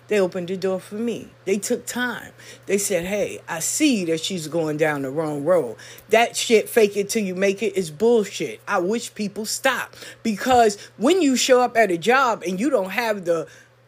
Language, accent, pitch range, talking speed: English, American, 195-250 Hz, 210 wpm